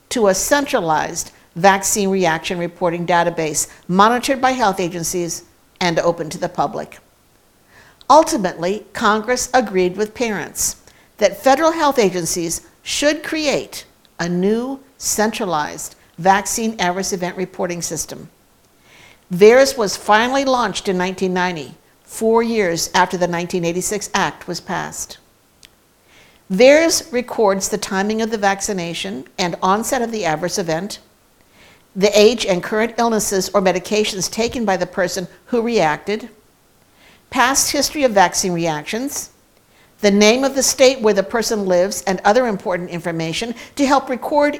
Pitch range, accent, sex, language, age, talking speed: 180-230 Hz, American, female, English, 60-79, 130 wpm